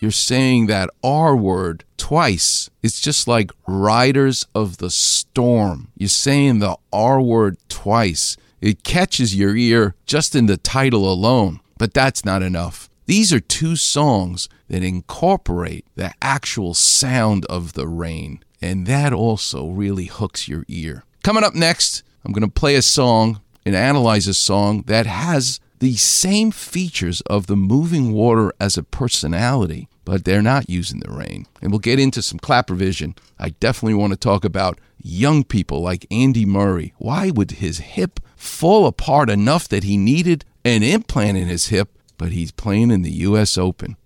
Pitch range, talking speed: 95-135 Hz, 165 wpm